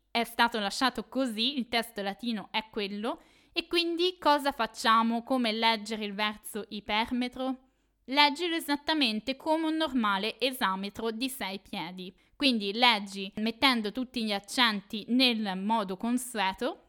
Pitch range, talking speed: 210-265 Hz, 130 wpm